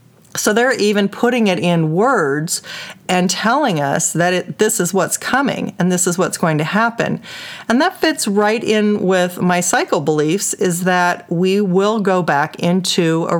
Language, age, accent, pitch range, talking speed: English, 40-59, American, 165-210 Hz, 175 wpm